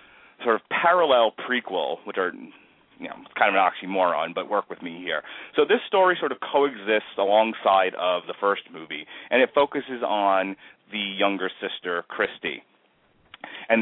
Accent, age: American, 30-49